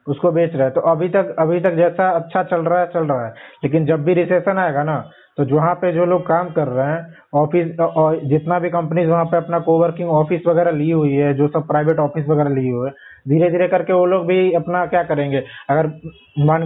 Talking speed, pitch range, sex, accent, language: 235 wpm, 155-175 Hz, male, native, Hindi